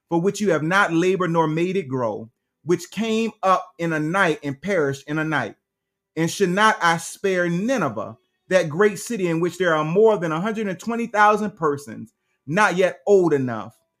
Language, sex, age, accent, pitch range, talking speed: English, male, 30-49, American, 130-190 Hz, 180 wpm